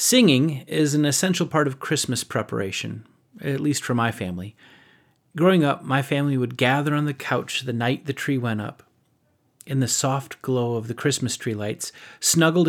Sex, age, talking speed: male, 30-49, 180 wpm